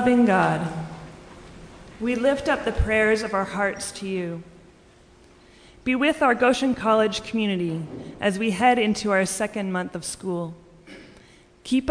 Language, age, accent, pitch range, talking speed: English, 30-49, American, 175-220 Hz, 140 wpm